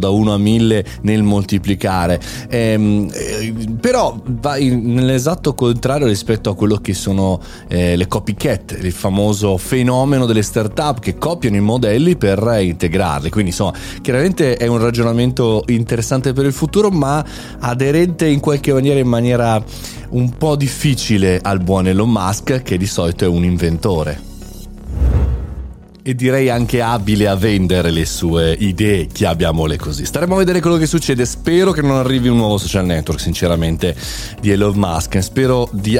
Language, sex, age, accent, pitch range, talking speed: Italian, male, 30-49, native, 95-135 Hz, 155 wpm